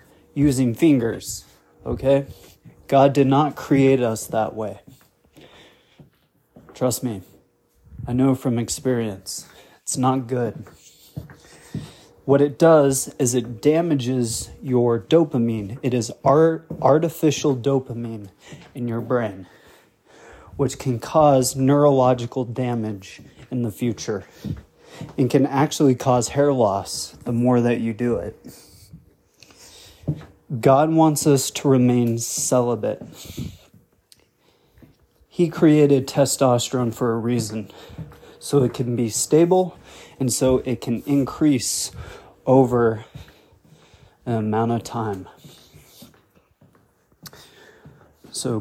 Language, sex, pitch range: English, male, 120-140 Hz